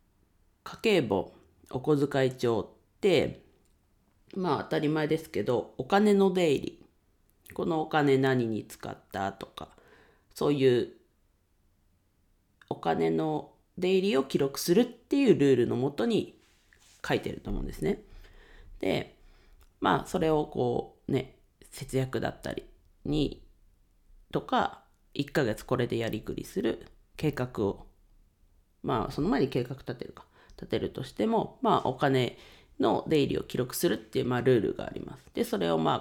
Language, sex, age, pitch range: Japanese, female, 40-59, 110-155 Hz